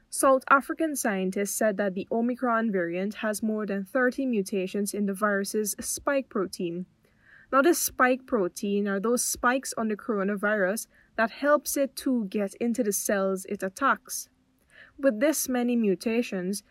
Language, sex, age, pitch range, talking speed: English, female, 10-29, 200-255 Hz, 150 wpm